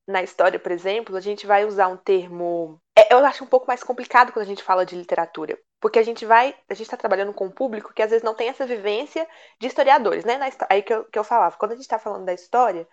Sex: female